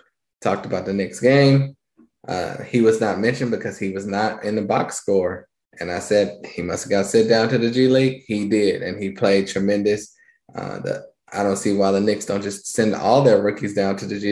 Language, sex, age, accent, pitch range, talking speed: English, male, 20-39, American, 100-120 Hz, 230 wpm